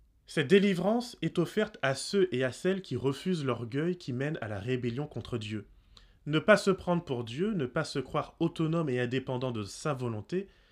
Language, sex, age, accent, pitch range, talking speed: French, male, 20-39, French, 130-180 Hz, 195 wpm